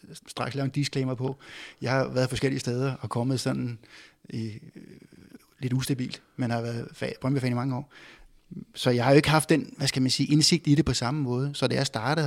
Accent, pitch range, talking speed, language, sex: native, 130-150 Hz, 225 wpm, Danish, male